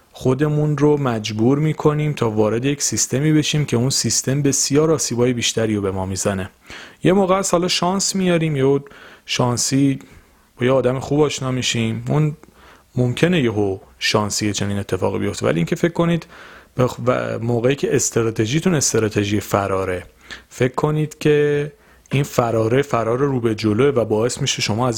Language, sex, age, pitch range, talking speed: Persian, male, 30-49, 110-135 Hz, 160 wpm